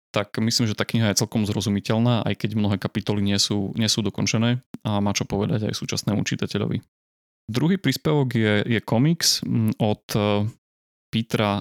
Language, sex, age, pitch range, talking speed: Slovak, male, 20-39, 105-120 Hz, 165 wpm